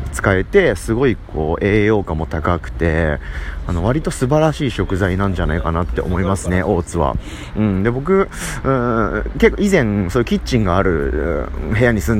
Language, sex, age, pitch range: Japanese, male, 30-49, 85-130 Hz